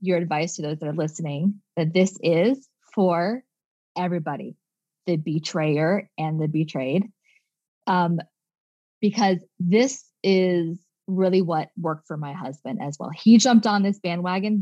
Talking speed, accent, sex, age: 140 wpm, American, female, 20-39